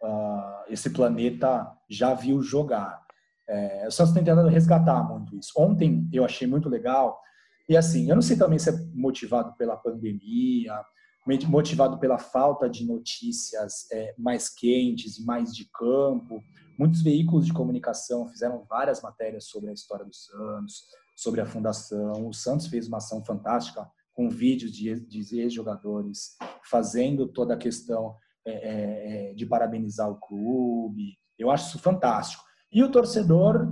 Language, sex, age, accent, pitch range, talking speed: Portuguese, male, 20-39, Brazilian, 115-165 Hz, 140 wpm